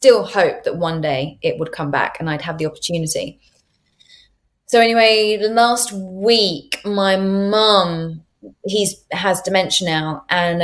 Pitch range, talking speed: 160-190 Hz, 140 wpm